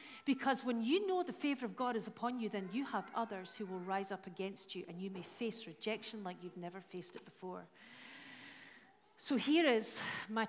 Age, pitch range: 40-59, 205-275 Hz